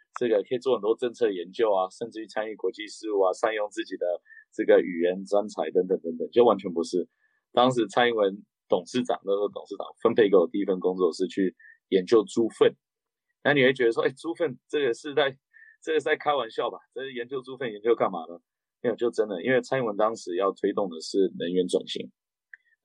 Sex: male